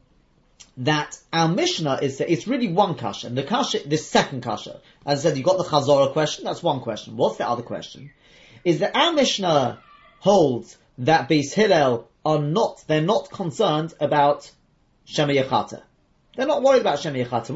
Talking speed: 180 wpm